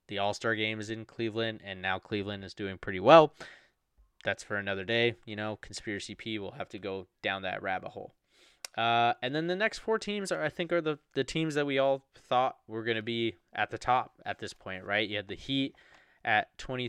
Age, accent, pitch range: 20-39, American, 100-120 Hz